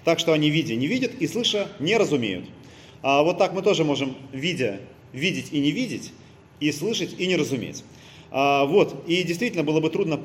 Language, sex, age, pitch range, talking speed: Russian, male, 30-49, 135-170 Hz, 175 wpm